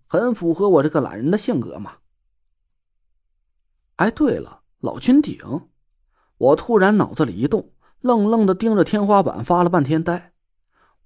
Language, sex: Chinese, male